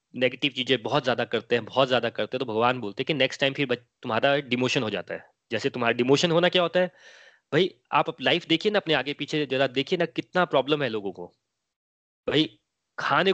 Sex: male